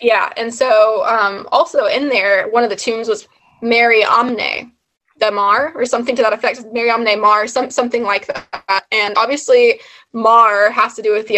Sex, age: female, 20-39